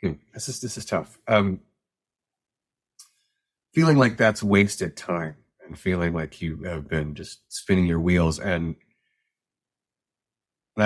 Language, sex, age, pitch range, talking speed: English, male, 30-49, 90-110 Hz, 125 wpm